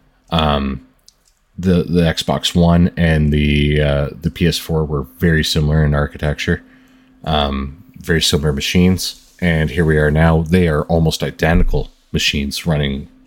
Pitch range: 75-90 Hz